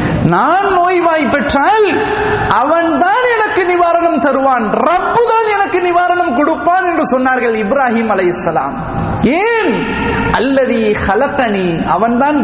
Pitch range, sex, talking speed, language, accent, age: 235-360 Hz, male, 95 wpm, English, Indian, 30-49